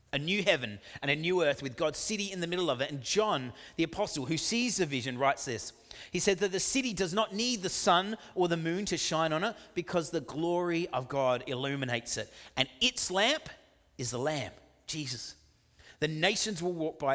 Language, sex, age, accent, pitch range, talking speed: English, male, 30-49, Australian, 110-160 Hz, 215 wpm